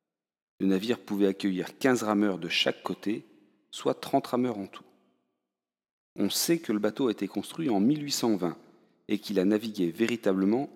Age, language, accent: 40-59, French, French